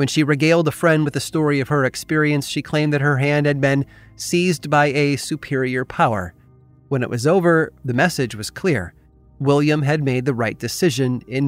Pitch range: 120-150 Hz